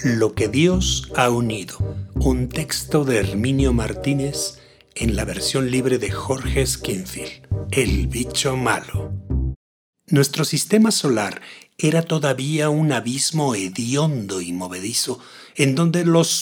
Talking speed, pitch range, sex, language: 120 wpm, 110-160 Hz, male, Spanish